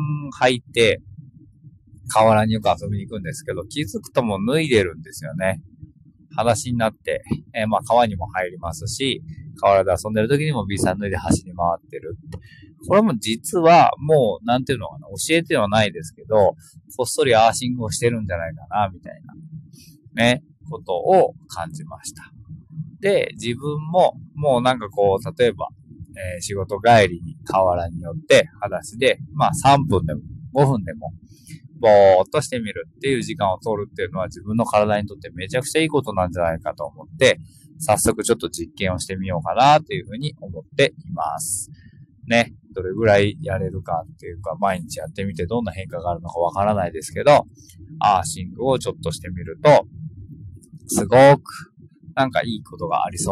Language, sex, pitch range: Japanese, male, 95-145 Hz